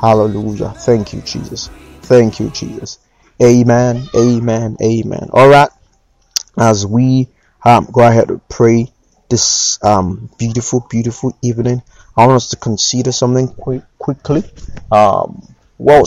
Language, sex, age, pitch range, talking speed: English, male, 30-49, 105-125 Hz, 125 wpm